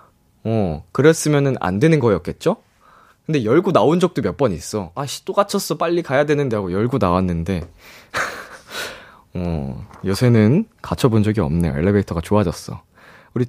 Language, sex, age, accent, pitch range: Korean, male, 20-39, native, 100-165 Hz